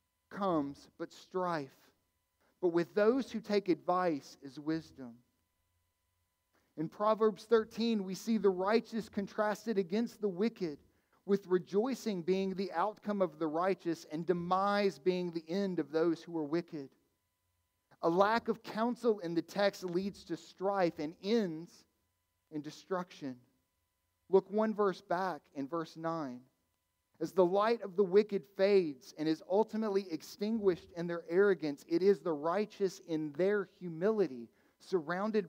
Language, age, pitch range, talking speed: English, 40-59, 150-205 Hz, 140 wpm